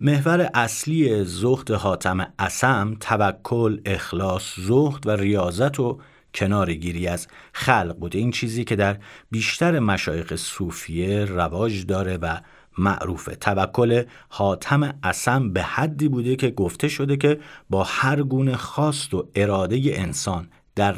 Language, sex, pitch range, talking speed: Persian, male, 90-135 Hz, 125 wpm